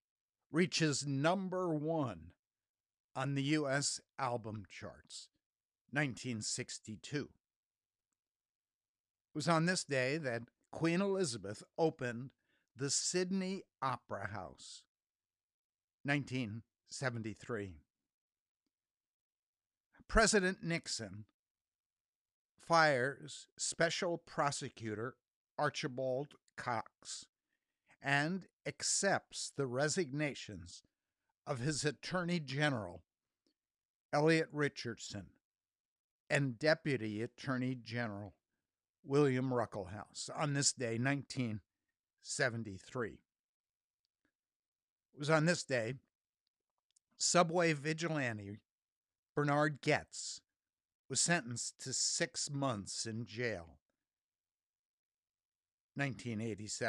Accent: American